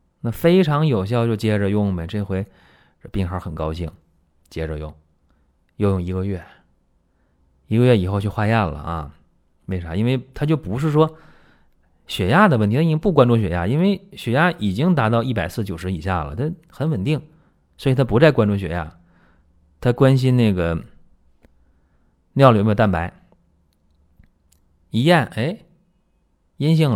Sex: male